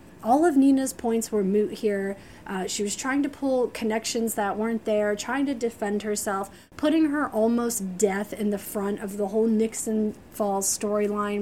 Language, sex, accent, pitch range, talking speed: English, female, American, 205-245 Hz, 180 wpm